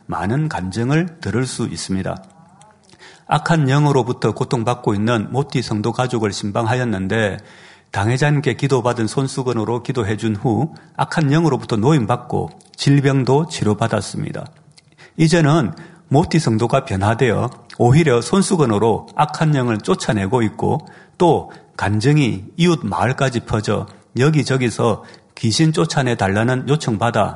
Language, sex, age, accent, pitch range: Korean, male, 40-59, native, 110-150 Hz